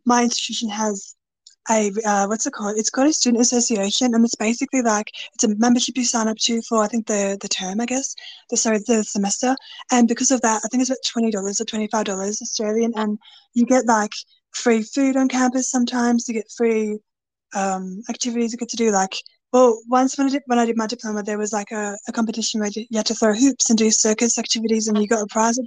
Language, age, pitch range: English, 20-39, 220-245 Hz